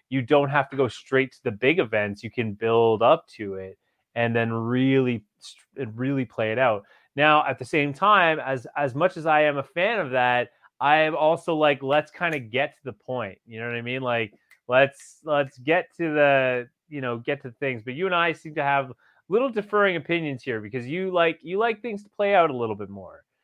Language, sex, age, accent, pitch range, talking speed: English, male, 30-49, American, 125-165 Hz, 225 wpm